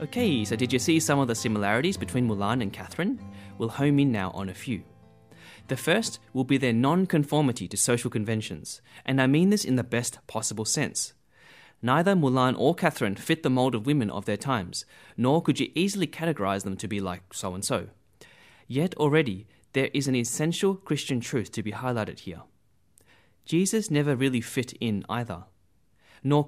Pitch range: 105-145 Hz